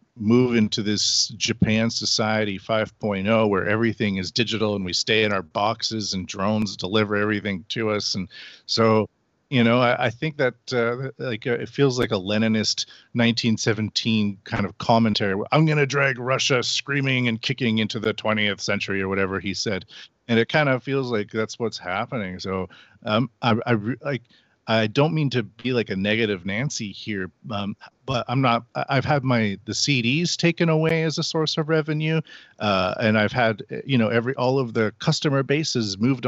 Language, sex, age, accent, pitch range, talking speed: English, male, 40-59, American, 105-125 Hz, 180 wpm